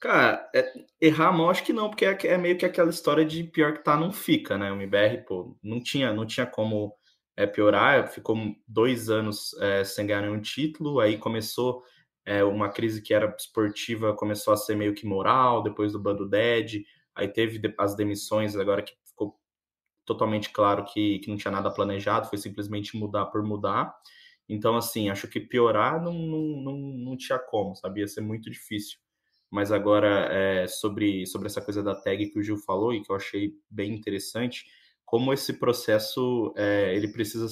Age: 20-39